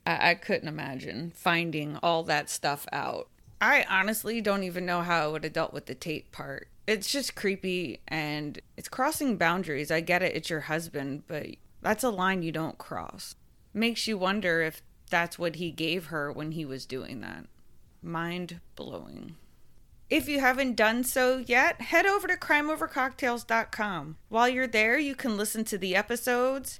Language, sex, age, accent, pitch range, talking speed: English, female, 20-39, American, 180-260 Hz, 170 wpm